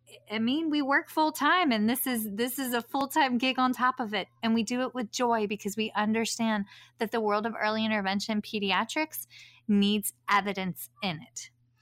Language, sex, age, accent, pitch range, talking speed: English, female, 30-49, American, 195-240 Hz, 190 wpm